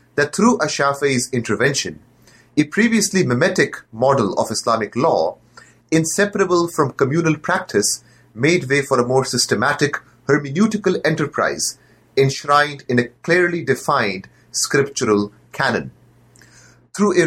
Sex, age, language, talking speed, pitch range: male, 30-49, English, 110 wpm, 125-165 Hz